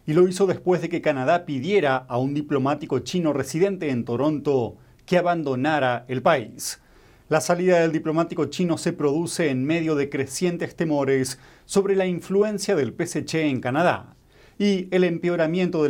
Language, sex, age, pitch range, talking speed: Spanish, male, 40-59, 130-160 Hz, 160 wpm